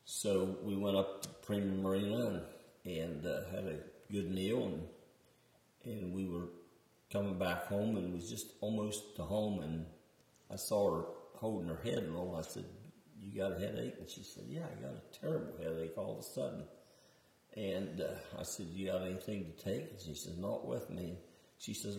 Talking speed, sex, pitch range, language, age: 200 wpm, male, 85-100 Hz, English, 50-69